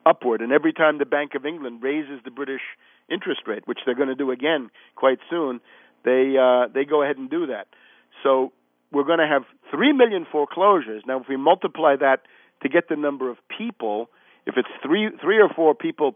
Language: English